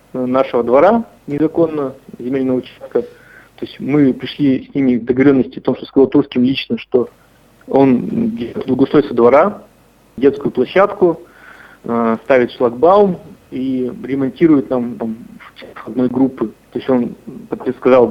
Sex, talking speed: male, 125 wpm